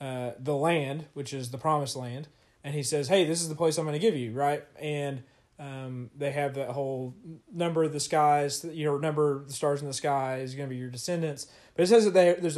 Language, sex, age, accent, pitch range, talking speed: English, male, 30-49, American, 135-160 Hz, 250 wpm